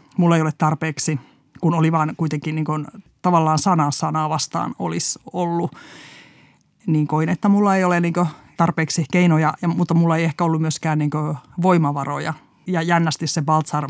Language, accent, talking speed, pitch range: Finnish, native, 160 wpm, 150-170 Hz